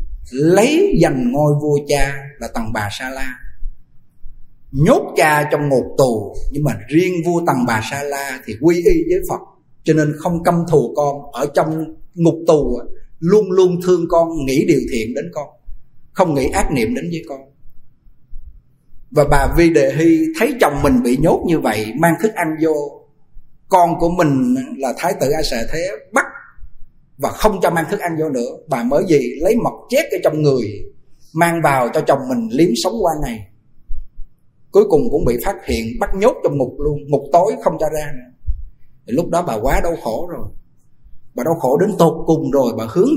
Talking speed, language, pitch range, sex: 190 wpm, Vietnamese, 140-195 Hz, male